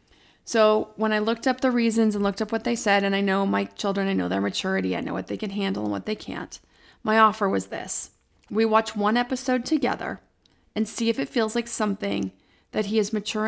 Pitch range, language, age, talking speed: 200-235 Hz, English, 30-49, 230 wpm